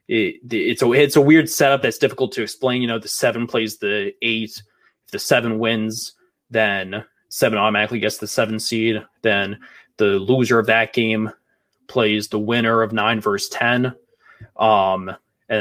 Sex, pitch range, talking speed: male, 110-130 Hz, 170 wpm